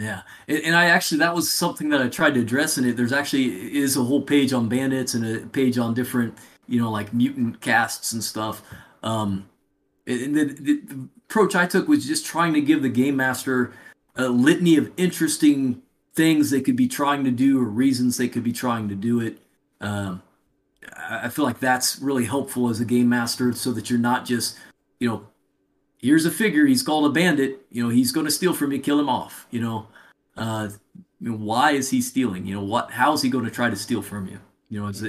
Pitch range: 115-140 Hz